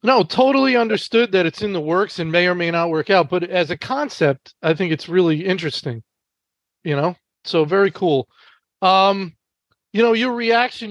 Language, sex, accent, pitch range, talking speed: English, male, American, 170-220 Hz, 185 wpm